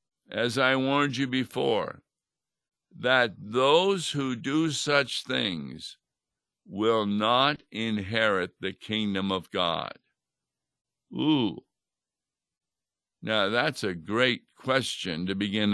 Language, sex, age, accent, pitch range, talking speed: English, male, 60-79, American, 100-125 Hz, 100 wpm